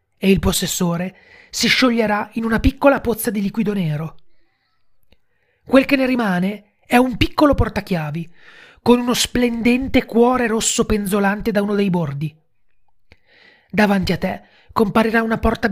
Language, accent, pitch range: Italian, native, 180-235 Hz